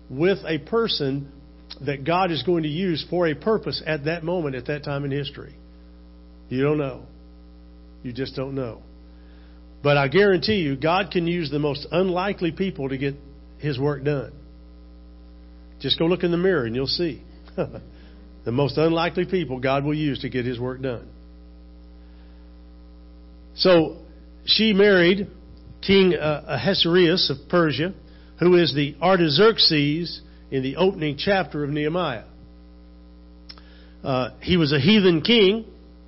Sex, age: male, 50-69